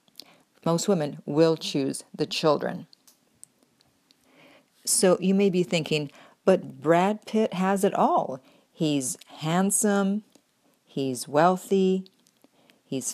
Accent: American